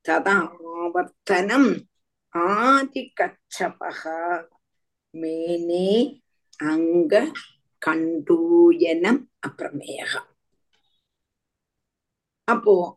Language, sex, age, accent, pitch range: Tamil, female, 50-69, native, 180-300 Hz